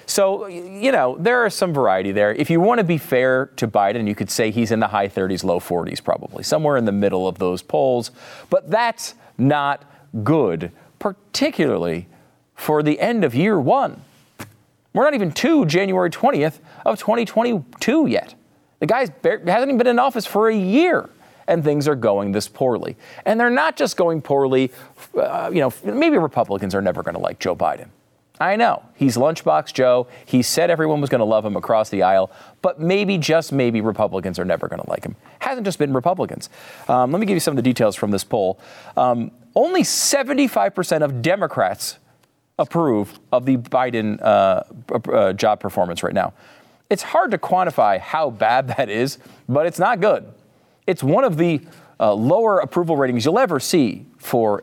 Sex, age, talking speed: male, 40-59, 190 wpm